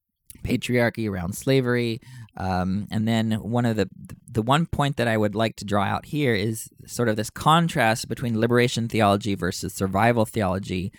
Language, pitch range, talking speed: English, 100-130 Hz, 170 wpm